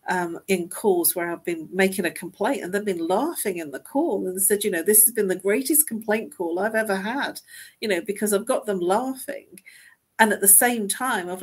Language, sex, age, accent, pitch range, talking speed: English, female, 50-69, British, 185-230 Hz, 230 wpm